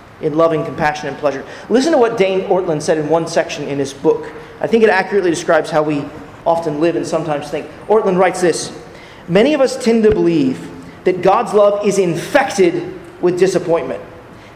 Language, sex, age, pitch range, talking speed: English, male, 30-49, 160-210 Hz, 185 wpm